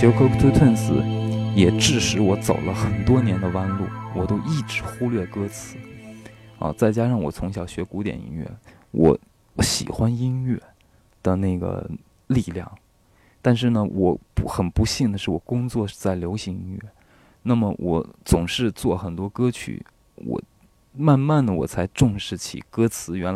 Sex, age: male, 20-39